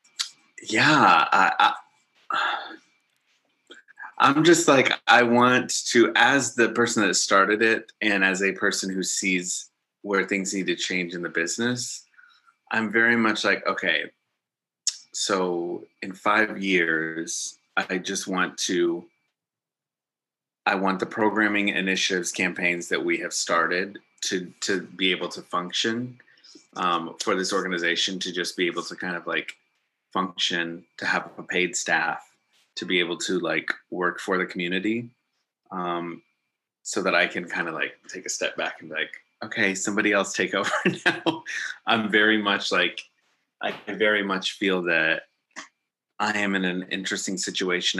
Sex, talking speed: male, 150 wpm